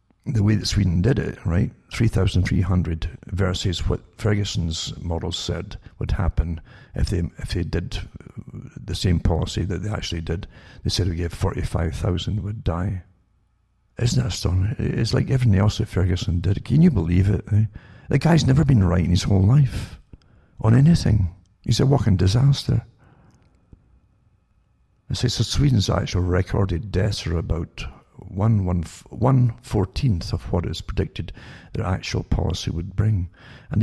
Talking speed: 150 wpm